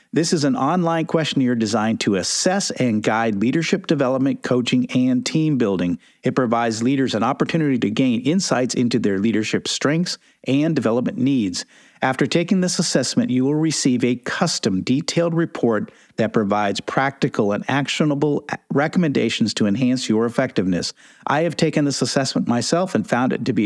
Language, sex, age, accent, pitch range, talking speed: English, male, 50-69, American, 115-165 Hz, 160 wpm